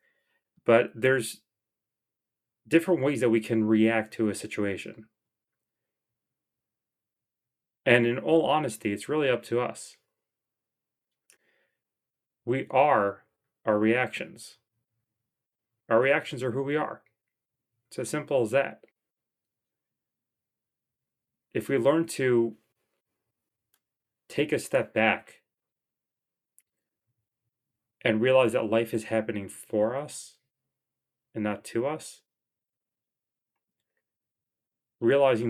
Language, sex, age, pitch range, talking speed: English, male, 30-49, 110-135 Hz, 95 wpm